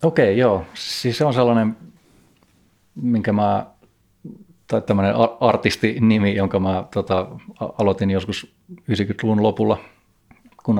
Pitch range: 95-105 Hz